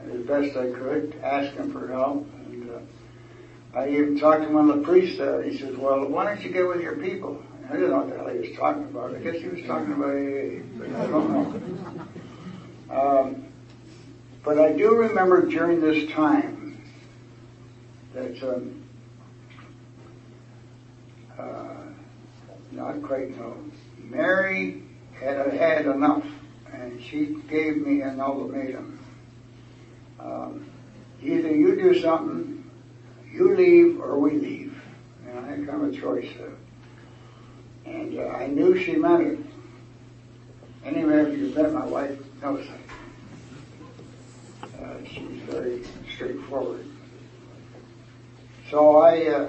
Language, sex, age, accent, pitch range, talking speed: English, male, 60-79, American, 120-160 Hz, 145 wpm